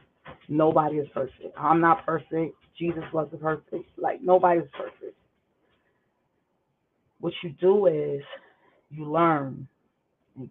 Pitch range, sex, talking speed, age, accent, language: 150-175 Hz, female, 115 wpm, 30-49, American, English